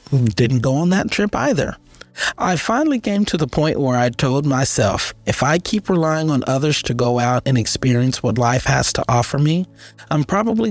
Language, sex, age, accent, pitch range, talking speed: English, male, 30-49, American, 120-165 Hz, 195 wpm